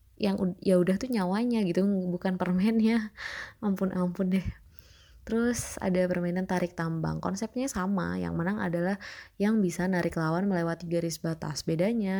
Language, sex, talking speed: Indonesian, female, 140 wpm